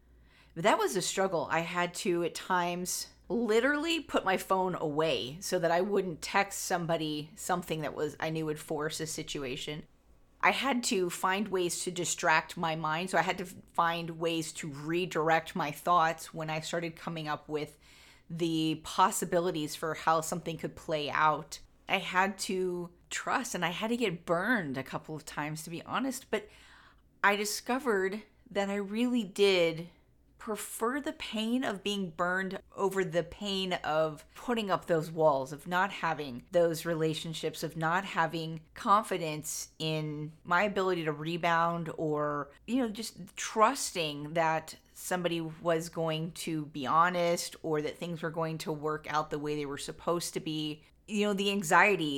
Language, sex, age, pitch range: English, female, 30-49, 155-190 Hz